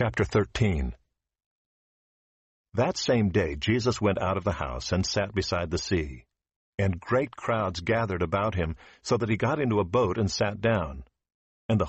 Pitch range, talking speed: 85-110 Hz, 170 wpm